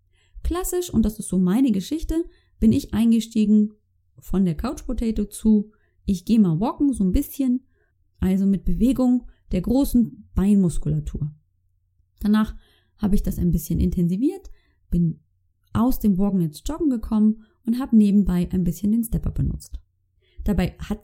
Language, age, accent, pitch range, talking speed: German, 20-39, German, 175-250 Hz, 150 wpm